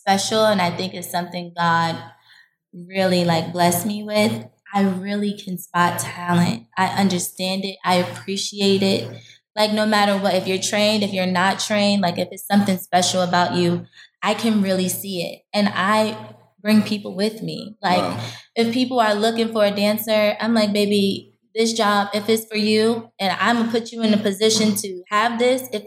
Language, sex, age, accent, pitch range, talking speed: English, female, 20-39, American, 185-215 Hz, 185 wpm